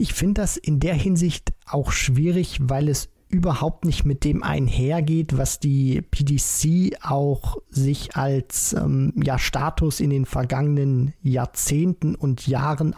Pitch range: 140-175 Hz